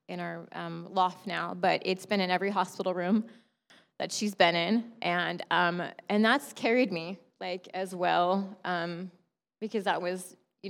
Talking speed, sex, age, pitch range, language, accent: 170 wpm, female, 20-39, 180-200 Hz, English, American